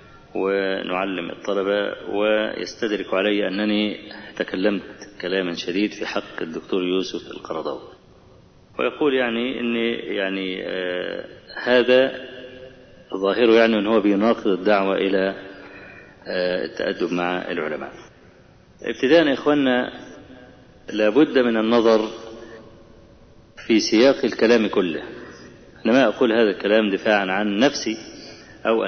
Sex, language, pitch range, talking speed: male, Arabic, 105-135 Hz, 100 wpm